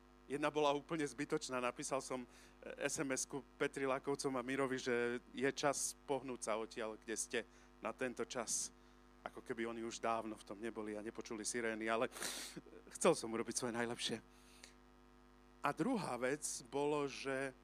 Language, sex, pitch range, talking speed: Slovak, male, 120-155 Hz, 150 wpm